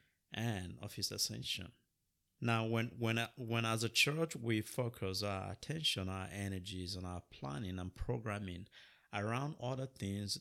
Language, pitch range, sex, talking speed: English, 105-130 Hz, male, 145 wpm